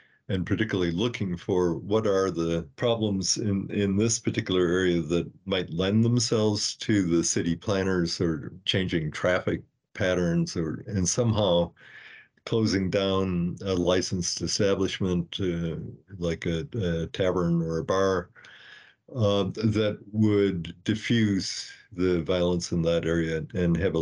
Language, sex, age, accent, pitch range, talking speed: English, male, 50-69, American, 85-105 Hz, 130 wpm